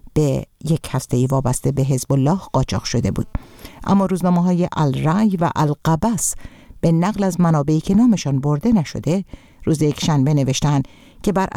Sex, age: female, 50-69